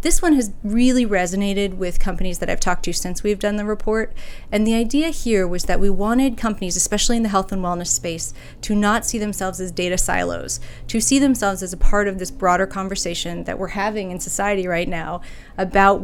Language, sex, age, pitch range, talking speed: English, female, 30-49, 180-215 Hz, 215 wpm